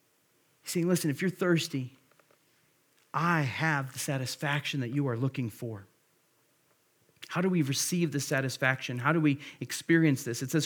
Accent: American